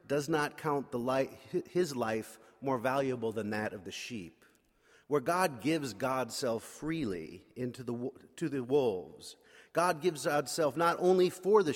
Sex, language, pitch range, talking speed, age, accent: male, English, 120-155 Hz, 150 wpm, 40-59, American